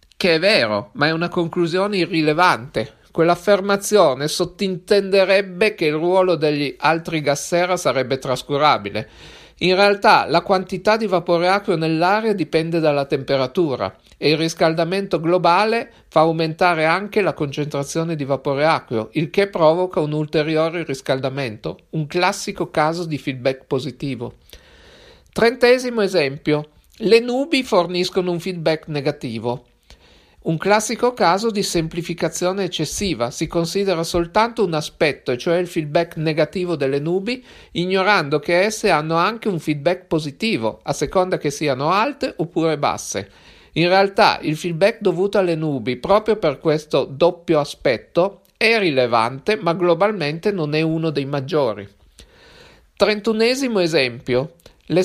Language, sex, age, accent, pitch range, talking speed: Italian, male, 50-69, native, 150-195 Hz, 130 wpm